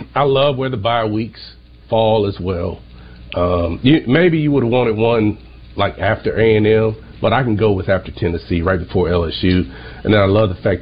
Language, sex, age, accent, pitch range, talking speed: English, male, 40-59, American, 100-125 Hz, 205 wpm